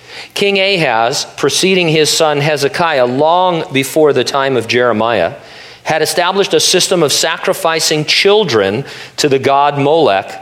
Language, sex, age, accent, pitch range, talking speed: English, male, 50-69, American, 125-160 Hz, 130 wpm